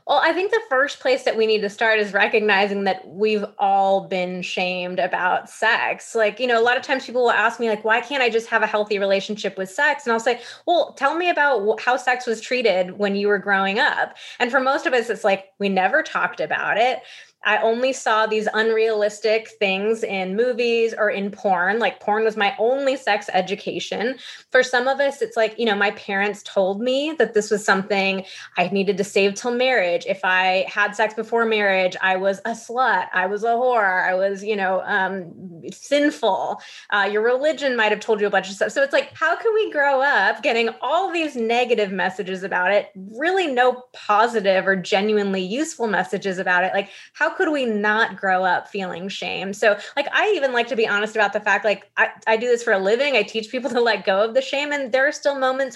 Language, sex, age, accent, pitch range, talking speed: English, female, 20-39, American, 195-250 Hz, 220 wpm